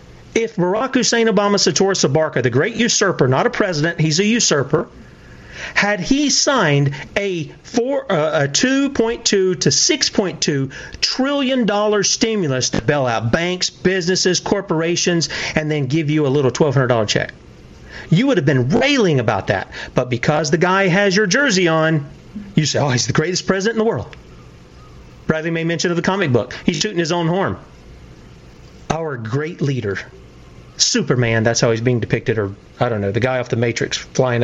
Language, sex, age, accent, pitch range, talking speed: English, male, 40-59, American, 125-200 Hz, 170 wpm